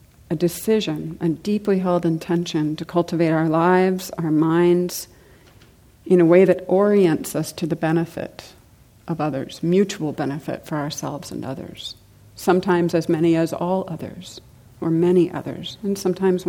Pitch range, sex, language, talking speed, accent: 155-180 Hz, female, English, 145 wpm, American